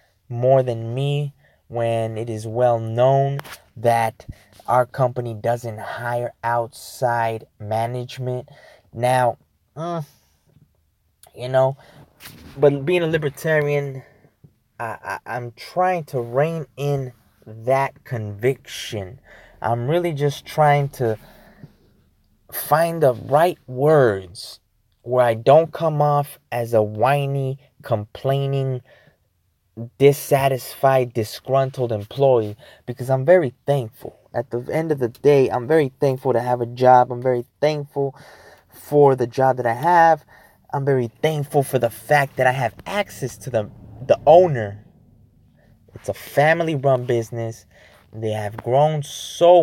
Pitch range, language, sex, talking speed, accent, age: 115-145 Hz, English, male, 120 wpm, American, 20-39